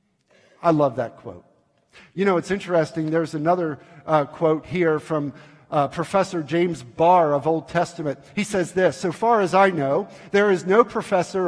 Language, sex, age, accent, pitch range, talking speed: English, male, 50-69, American, 155-185 Hz, 175 wpm